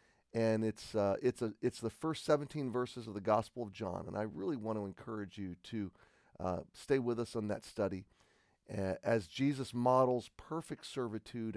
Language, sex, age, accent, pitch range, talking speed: English, male, 40-59, American, 100-125 Hz, 180 wpm